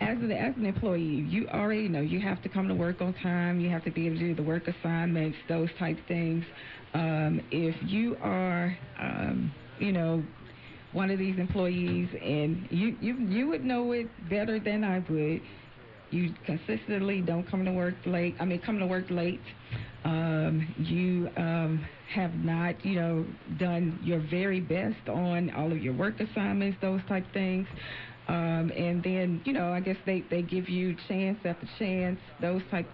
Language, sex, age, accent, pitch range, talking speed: English, female, 40-59, American, 160-185 Hz, 180 wpm